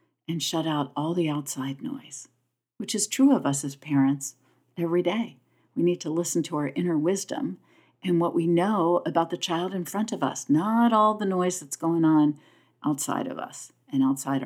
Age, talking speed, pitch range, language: 50-69, 195 wpm, 140-195 Hz, English